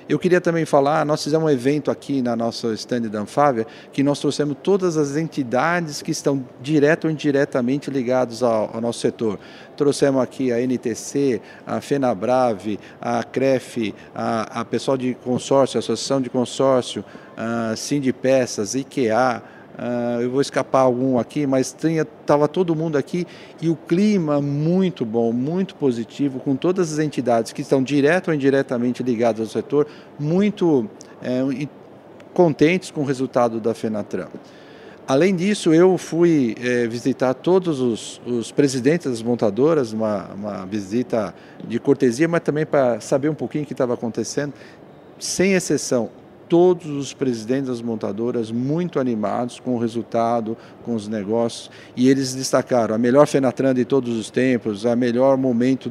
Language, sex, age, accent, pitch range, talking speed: Portuguese, male, 50-69, Brazilian, 120-150 Hz, 155 wpm